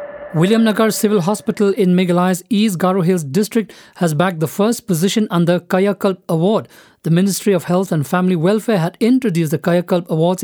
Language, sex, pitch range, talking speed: English, male, 170-200 Hz, 180 wpm